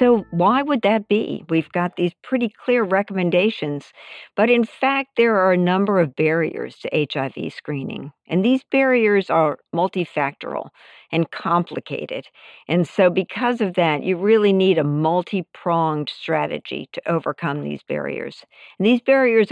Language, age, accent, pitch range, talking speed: English, 50-69, American, 160-195 Hz, 150 wpm